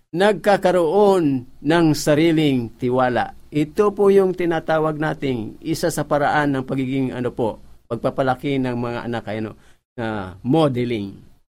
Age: 50-69